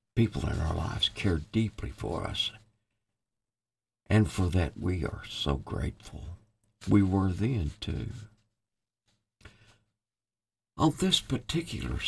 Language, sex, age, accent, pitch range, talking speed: English, male, 60-79, American, 90-110 Hz, 110 wpm